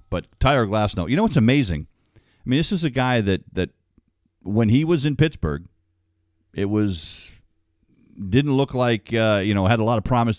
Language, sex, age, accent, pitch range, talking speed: English, male, 50-69, American, 90-115 Hz, 195 wpm